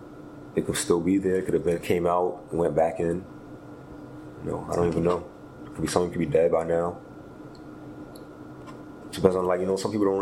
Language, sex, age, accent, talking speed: English, male, 30-49, American, 210 wpm